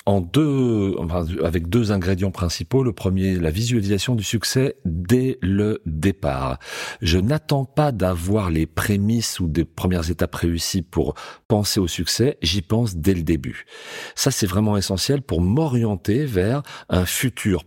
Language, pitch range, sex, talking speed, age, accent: French, 85-115 Hz, male, 150 wpm, 40-59, French